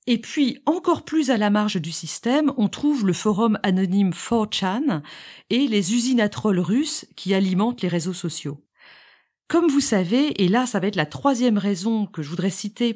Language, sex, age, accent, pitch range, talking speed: French, female, 40-59, French, 185-275 Hz, 190 wpm